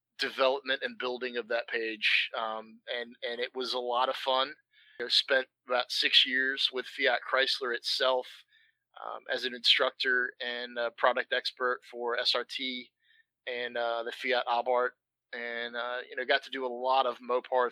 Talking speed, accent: 165 wpm, American